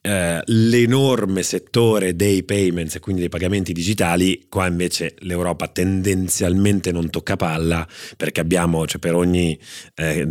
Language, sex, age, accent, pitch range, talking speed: Italian, male, 30-49, native, 85-110 Hz, 135 wpm